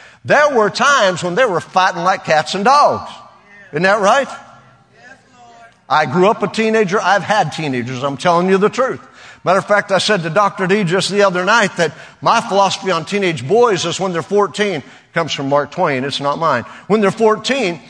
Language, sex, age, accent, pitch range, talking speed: English, male, 50-69, American, 175-235 Hz, 200 wpm